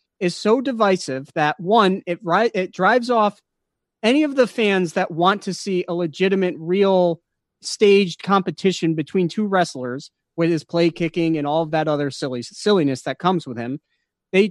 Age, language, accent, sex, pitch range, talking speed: 30-49, English, American, male, 165-205 Hz, 170 wpm